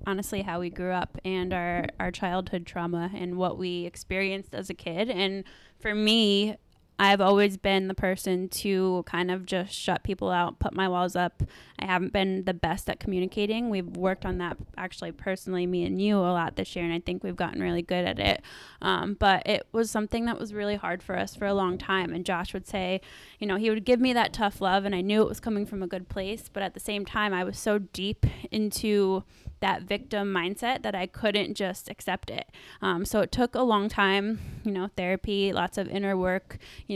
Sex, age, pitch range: female, 10-29, 185-210 Hz